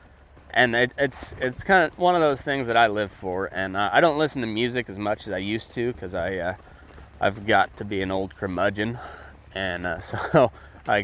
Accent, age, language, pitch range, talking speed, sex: American, 20-39, English, 90-135 Hz, 215 wpm, male